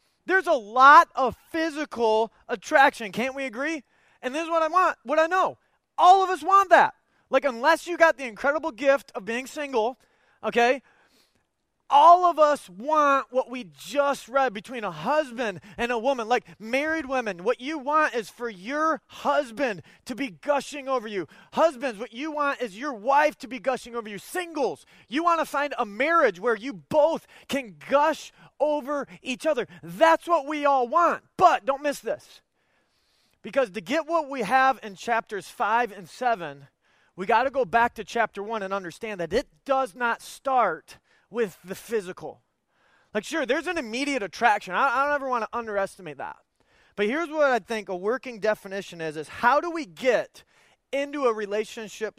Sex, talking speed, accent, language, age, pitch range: male, 185 wpm, American, English, 20-39, 215-290 Hz